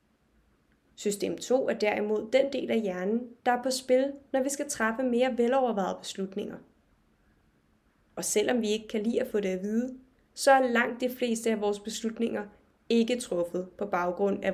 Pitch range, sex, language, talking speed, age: 210-255 Hz, female, Danish, 175 wpm, 20-39